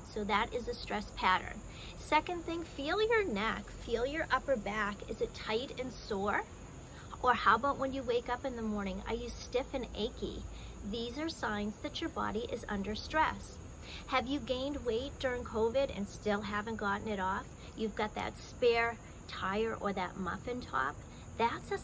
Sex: female